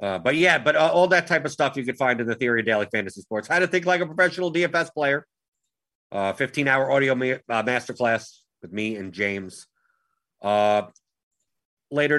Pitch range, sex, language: 115-150 Hz, male, English